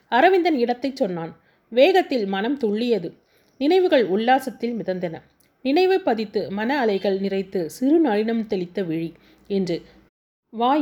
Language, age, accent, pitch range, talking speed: Tamil, 30-49, native, 195-270 Hz, 105 wpm